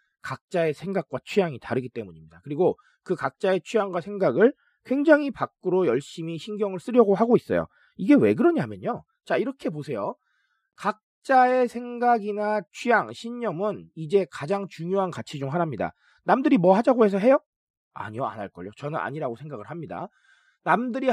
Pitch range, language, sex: 170-240 Hz, Korean, male